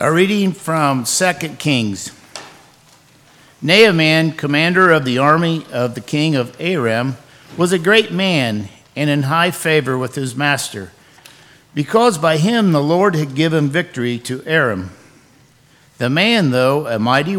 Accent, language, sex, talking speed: American, English, male, 140 wpm